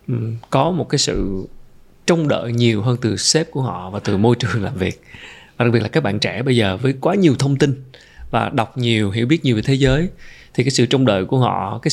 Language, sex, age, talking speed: Vietnamese, male, 20-39, 245 wpm